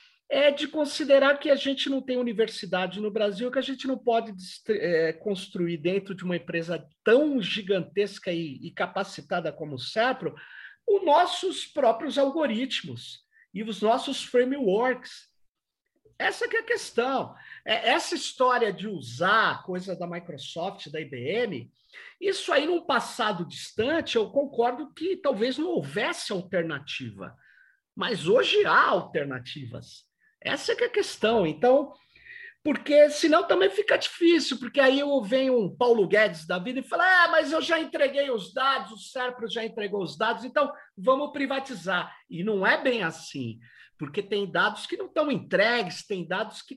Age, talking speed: 50-69, 160 wpm